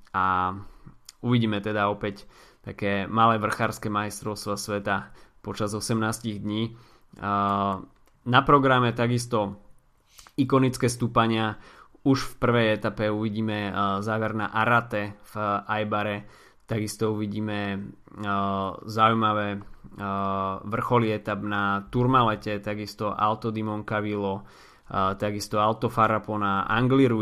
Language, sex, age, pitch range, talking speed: Slovak, male, 20-39, 100-115 Hz, 90 wpm